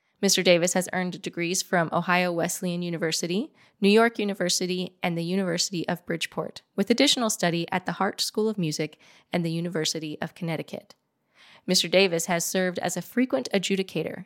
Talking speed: 165 wpm